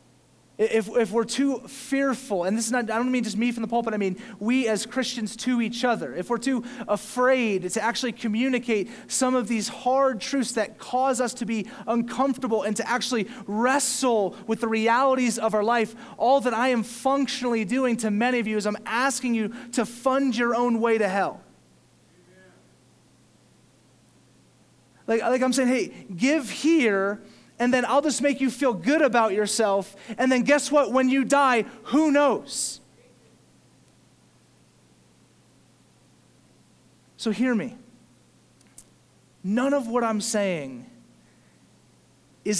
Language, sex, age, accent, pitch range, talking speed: English, male, 30-49, American, 220-260 Hz, 155 wpm